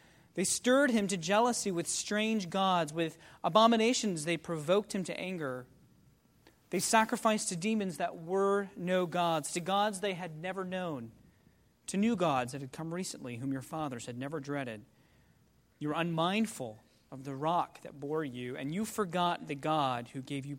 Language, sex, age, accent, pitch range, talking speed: English, male, 40-59, American, 135-185 Hz, 170 wpm